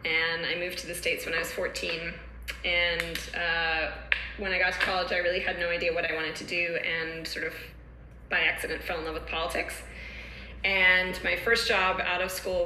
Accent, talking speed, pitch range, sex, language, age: American, 210 wpm, 165-225 Hz, female, English, 20-39